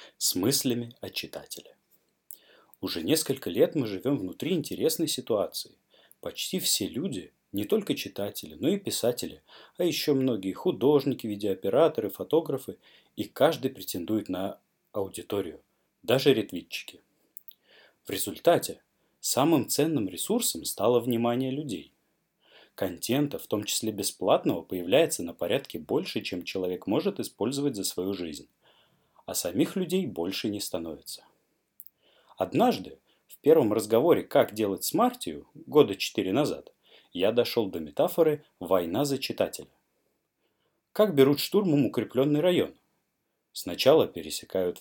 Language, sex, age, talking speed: Russian, male, 30-49, 120 wpm